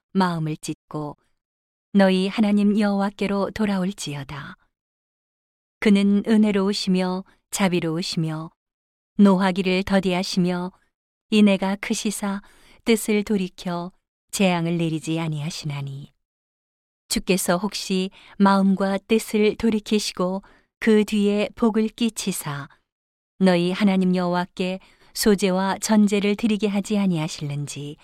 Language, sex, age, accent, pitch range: Korean, female, 40-59, native, 165-205 Hz